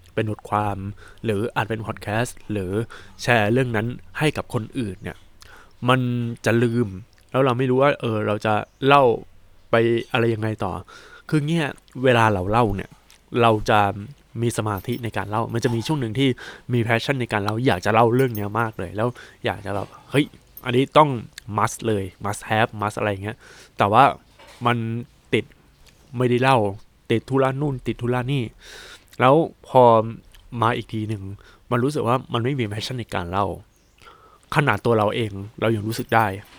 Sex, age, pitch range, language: male, 20-39, 105-125 Hz, Thai